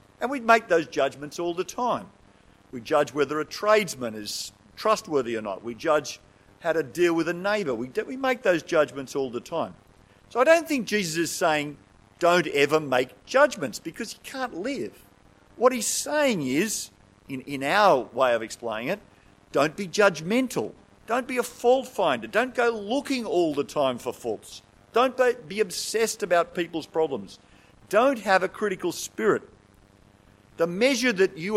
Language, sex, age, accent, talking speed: English, male, 50-69, Australian, 170 wpm